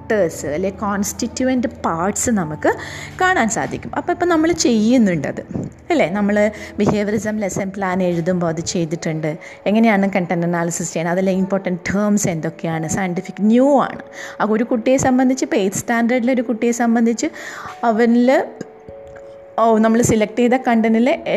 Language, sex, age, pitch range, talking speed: Malayalam, female, 20-39, 195-260 Hz, 130 wpm